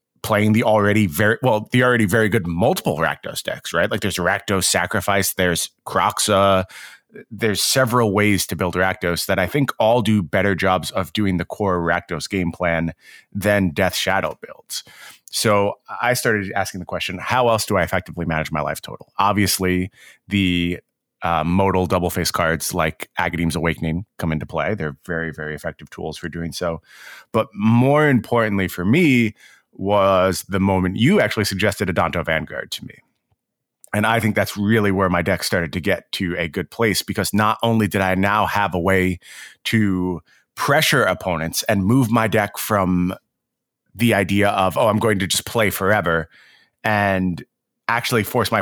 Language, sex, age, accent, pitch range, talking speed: English, male, 30-49, American, 90-110 Hz, 175 wpm